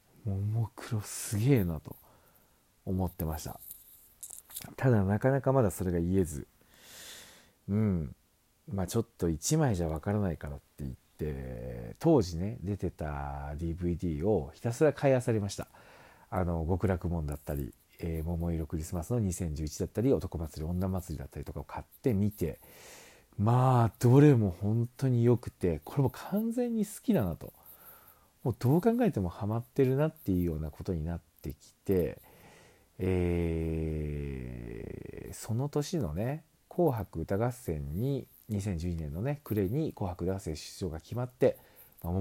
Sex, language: male, Japanese